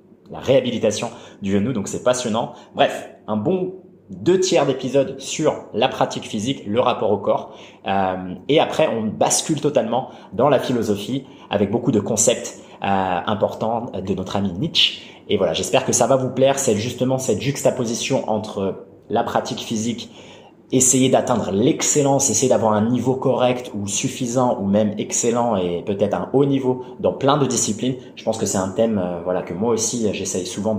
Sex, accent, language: male, French, French